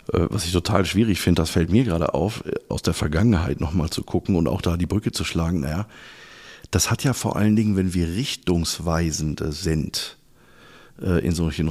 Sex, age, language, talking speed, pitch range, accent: male, 50-69, German, 190 wpm, 85-100 Hz, German